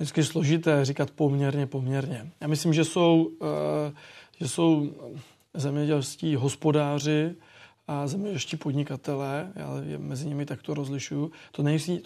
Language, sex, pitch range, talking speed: Czech, male, 140-155 Hz, 120 wpm